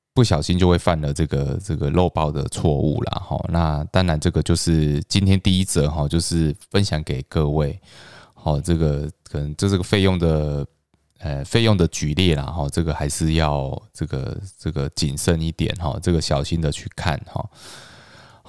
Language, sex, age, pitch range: Chinese, male, 20-39, 75-100 Hz